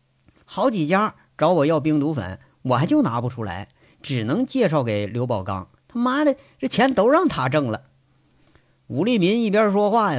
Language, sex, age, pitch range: Chinese, male, 50-69, 115-165 Hz